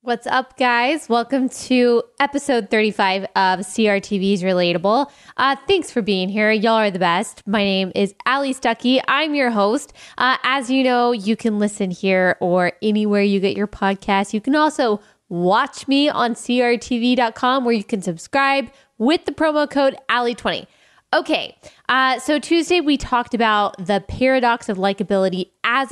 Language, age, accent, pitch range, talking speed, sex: English, 20-39, American, 205-265 Hz, 160 wpm, female